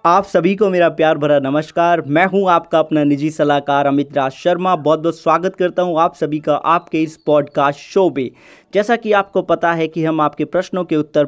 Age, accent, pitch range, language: 30-49, native, 150-195 Hz, Hindi